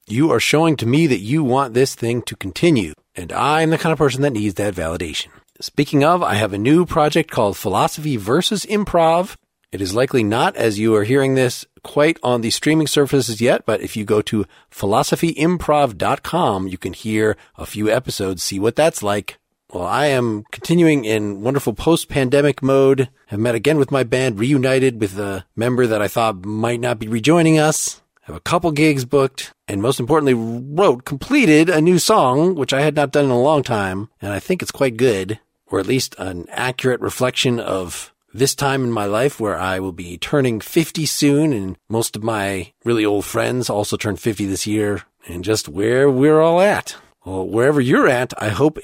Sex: male